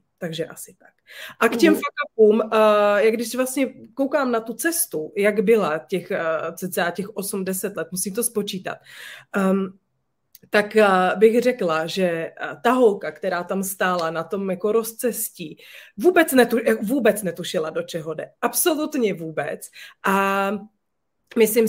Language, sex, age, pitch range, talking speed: Czech, female, 30-49, 195-225 Hz, 135 wpm